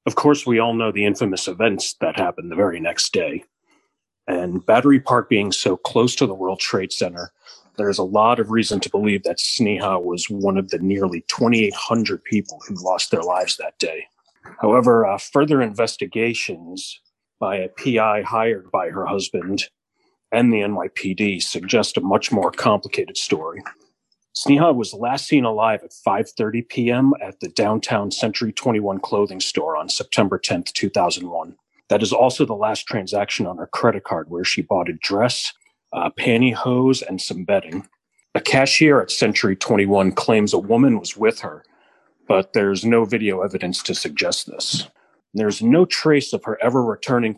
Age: 40-59